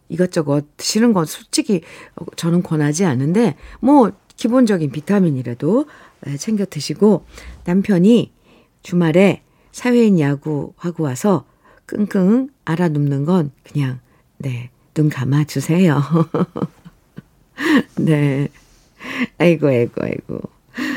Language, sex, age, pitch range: Korean, female, 50-69, 155-230 Hz